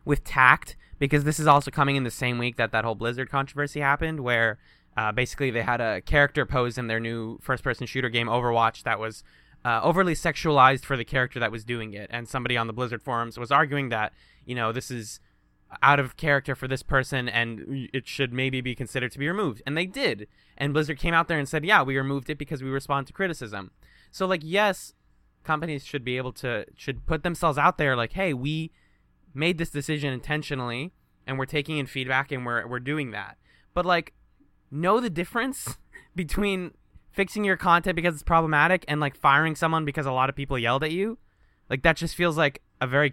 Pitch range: 125-160 Hz